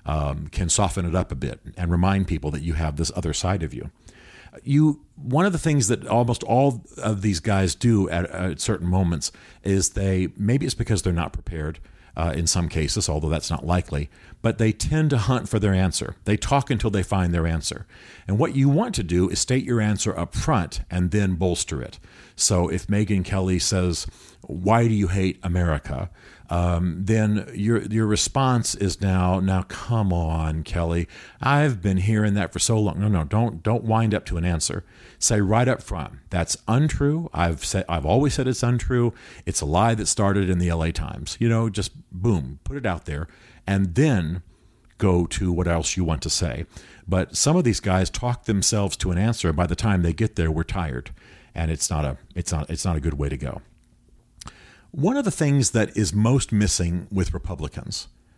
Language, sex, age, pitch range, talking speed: English, male, 50-69, 85-110 Hz, 205 wpm